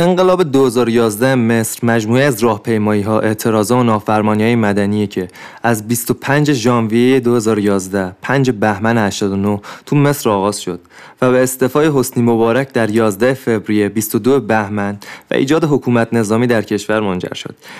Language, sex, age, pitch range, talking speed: Persian, male, 20-39, 110-140 Hz, 135 wpm